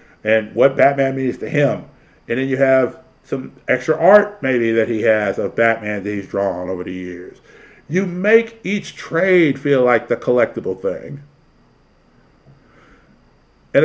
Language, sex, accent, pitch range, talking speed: English, male, American, 115-155 Hz, 150 wpm